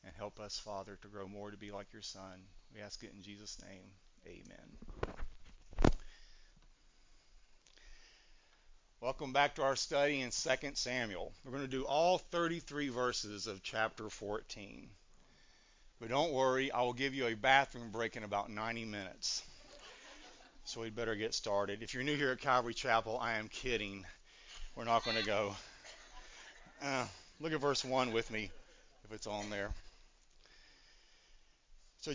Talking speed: 155 wpm